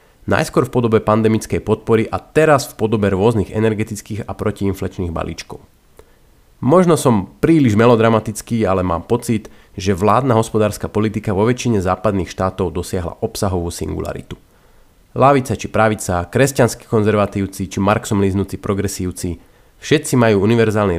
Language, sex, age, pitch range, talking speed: Slovak, male, 30-49, 95-115 Hz, 125 wpm